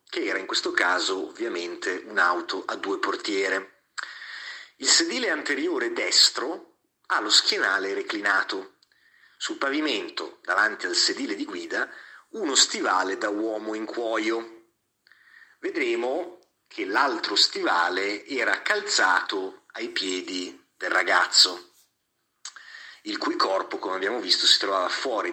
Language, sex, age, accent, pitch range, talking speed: Italian, male, 30-49, native, 285-380 Hz, 120 wpm